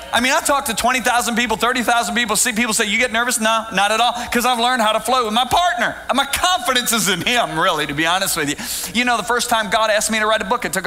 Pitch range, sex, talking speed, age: 220-275 Hz, male, 295 wpm, 40-59